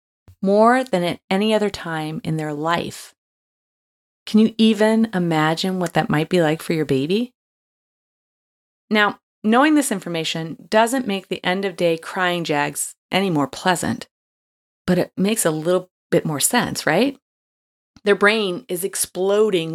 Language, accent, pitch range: English, American, 175-255 Hz